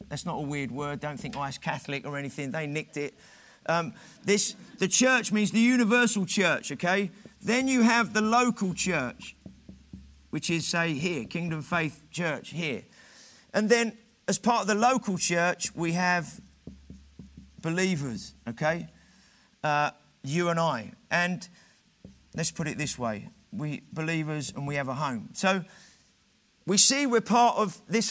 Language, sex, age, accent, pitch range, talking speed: English, male, 40-59, British, 170-230 Hz, 165 wpm